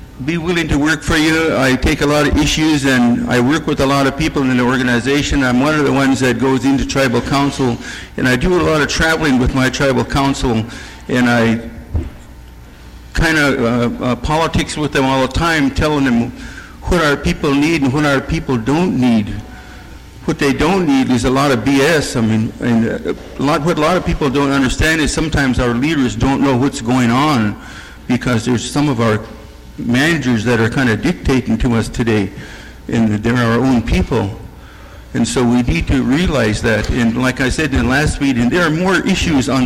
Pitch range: 120-140 Hz